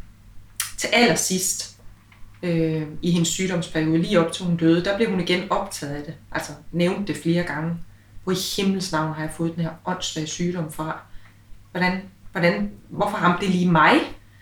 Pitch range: 150-185 Hz